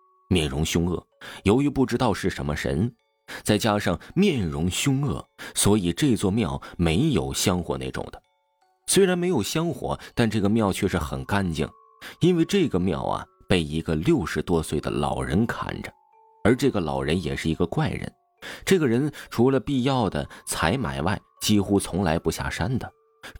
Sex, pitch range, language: male, 80-120 Hz, Chinese